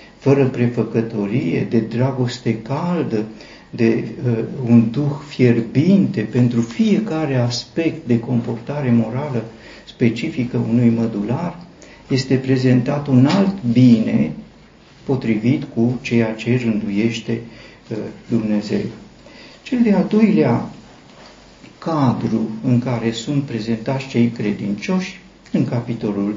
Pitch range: 115-145 Hz